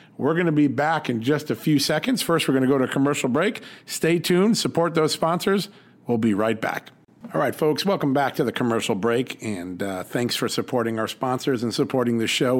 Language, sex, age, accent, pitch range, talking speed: English, male, 50-69, American, 115-140 Hz, 230 wpm